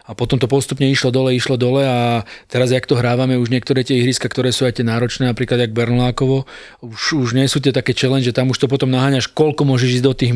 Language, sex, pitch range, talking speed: Slovak, male, 120-130 Hz, 250 wpm